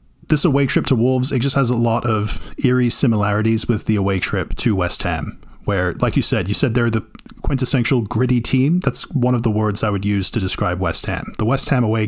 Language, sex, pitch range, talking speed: English, male, 110-130 Hz, 235 wpm